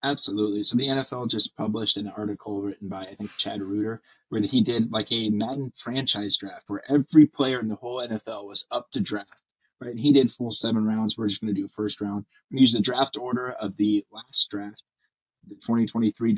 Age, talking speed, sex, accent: 20-39, 215 wpm, male, American